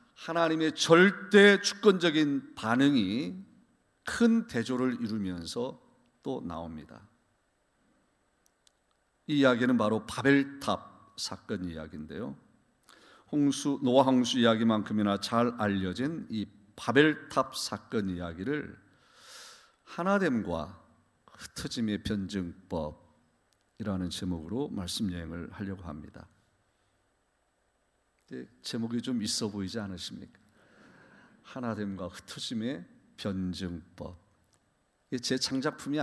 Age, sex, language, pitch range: 50-69, male, Korean, 95-130 Hz